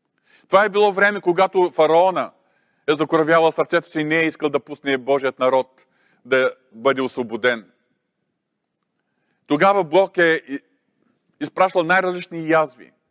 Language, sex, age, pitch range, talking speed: Bulgarian, male, 40-59, 135-175 Hz, 125 wpm